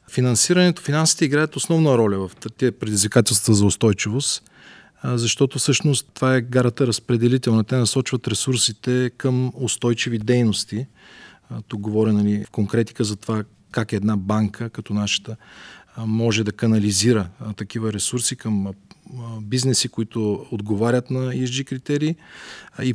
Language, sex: Bulgarian, male